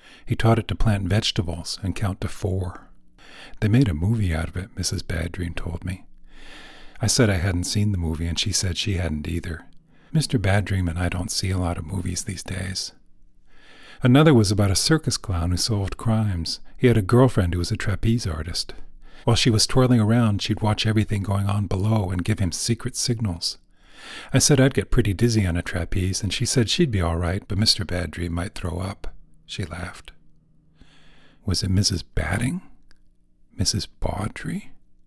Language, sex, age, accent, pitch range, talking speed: English, male, 50-69, American, 90-110 Hz, 195 wpm